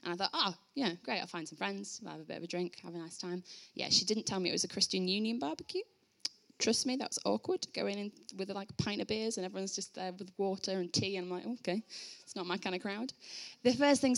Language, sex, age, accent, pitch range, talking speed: English, female, 10-29, British, 170-215 Hz, 275 wpm